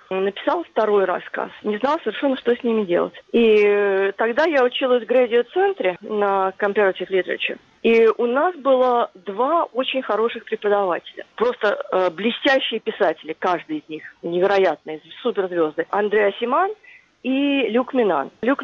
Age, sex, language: 30-49, female, Russian